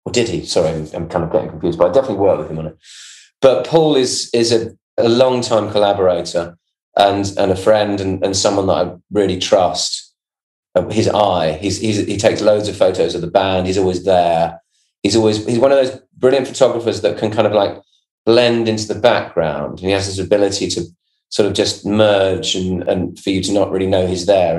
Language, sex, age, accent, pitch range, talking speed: English, male, 30-49, British, 90-110 Hz, 215 wpm